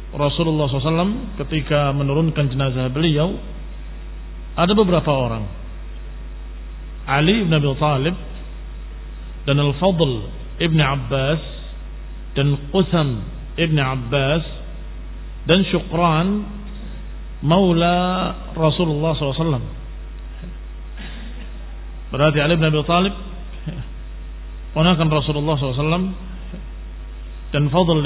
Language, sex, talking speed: Indonesian, male, 75 wpm